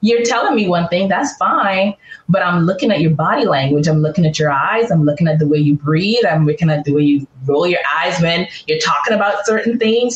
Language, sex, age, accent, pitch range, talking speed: English, female, 20-39, American, 160-215 Hz, 240 wpm